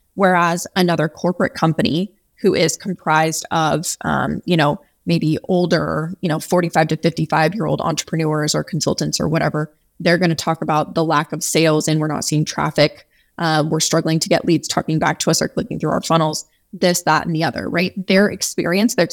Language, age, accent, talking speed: English, 20-39, American, 190 wpm